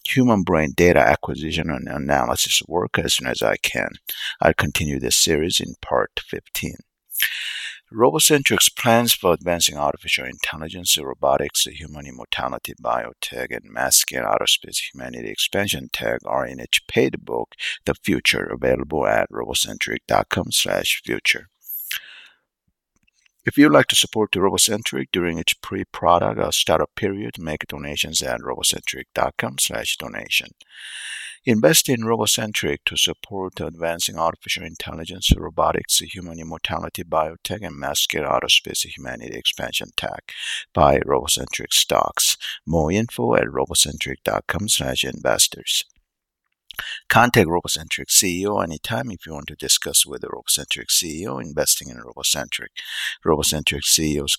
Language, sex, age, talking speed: English, male, 50-69, 120 wpm